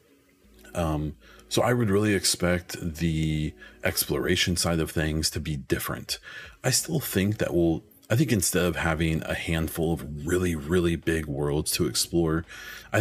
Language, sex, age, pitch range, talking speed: English, male, 30-49, 75-95 Hz, 155 wpm